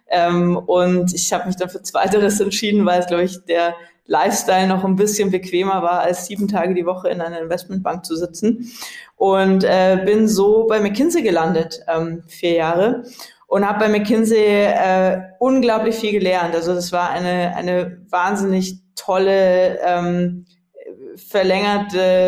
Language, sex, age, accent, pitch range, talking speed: German, female, 20-39, German, 180-210 Hz, 155 wpm